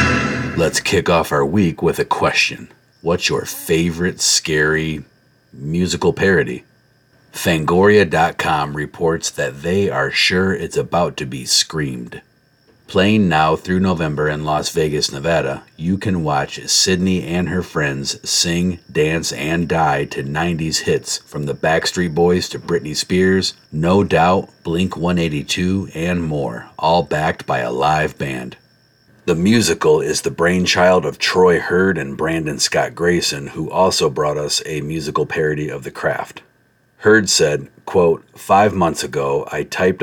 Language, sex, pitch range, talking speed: English, male, 75-90 Hz, 145 wpm